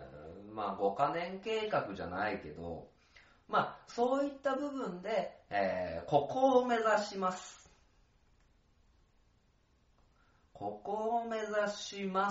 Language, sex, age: Japanese, male, 30-49